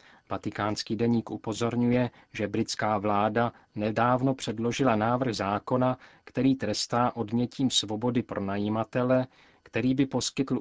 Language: Czech